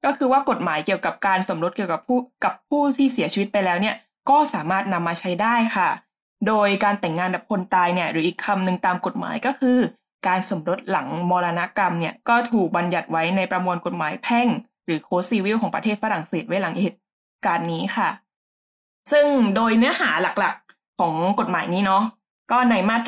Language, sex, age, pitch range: Thai, female, 20-39, 180-230 Hz